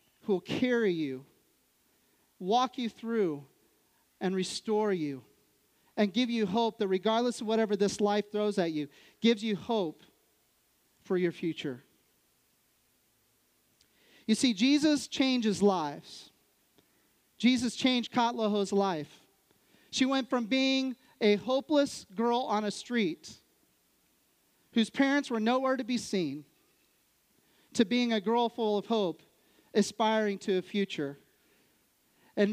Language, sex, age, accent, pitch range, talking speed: English, male, 40-59, American, 180-235 Hz, 125 wpm